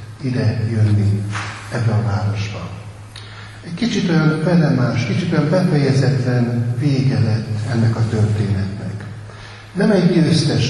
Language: Hungarian